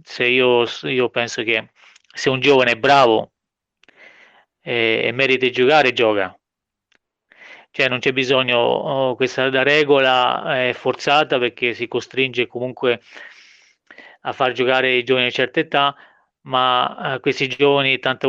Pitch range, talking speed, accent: 120-135 Hz, 130 wpm, native